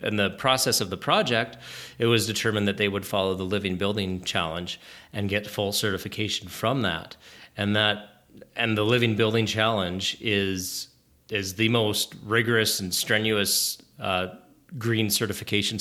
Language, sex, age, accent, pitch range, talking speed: English, male, 30-49, American, 95-110 Hz, 150 wpm